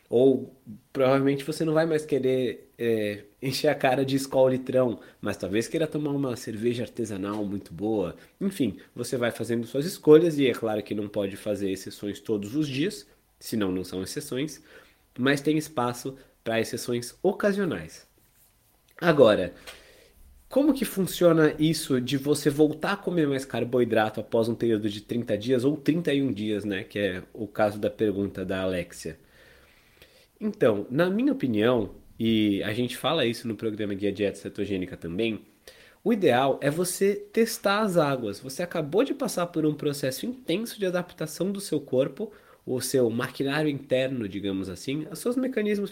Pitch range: 110-155 Hz